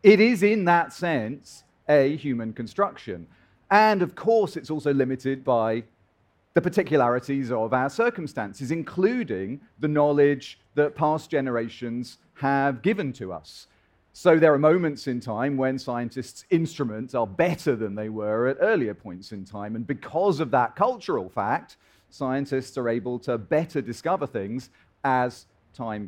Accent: British